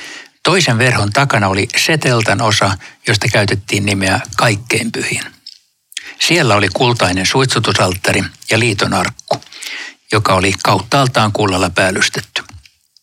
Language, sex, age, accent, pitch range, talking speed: Finnish, male, 60-79, native, 100-125 Hz, 95 wpm